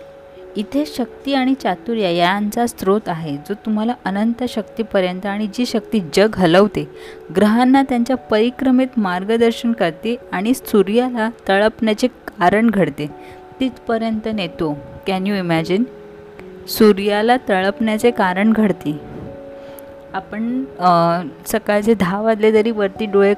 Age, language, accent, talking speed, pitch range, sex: 20-39, Marathi, native, 110 wpm, 175-225 Hz, female